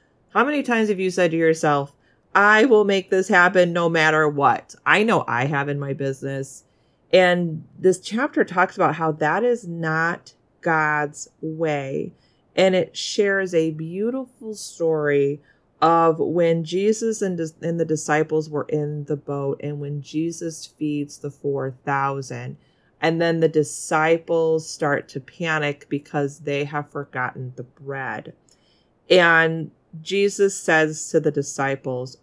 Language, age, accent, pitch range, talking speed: English, 30-49, American, 145-190 Hz, 140 wpm